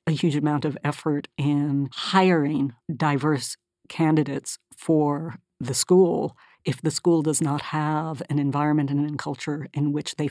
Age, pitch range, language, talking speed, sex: 50-69, 145-175 Hz, English, 150 wpm, female